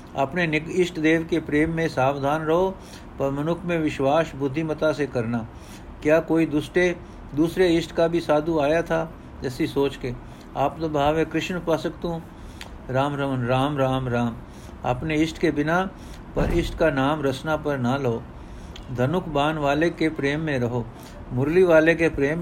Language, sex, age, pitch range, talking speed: Punjabi, male, 60-79, 135-160 Hz, 170 wpm